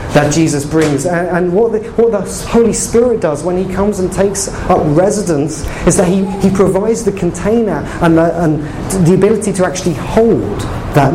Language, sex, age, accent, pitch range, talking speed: English, male, 30-49, British, 140-180 Hz, 190 wpm